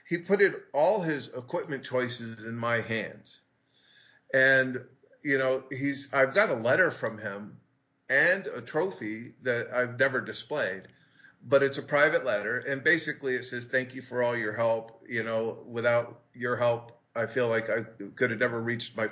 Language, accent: English, American